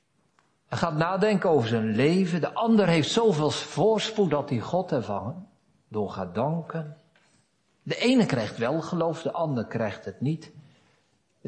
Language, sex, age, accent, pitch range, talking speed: Dutch, male, 50-69, Dutch, 120-190 Hz, 150 wpm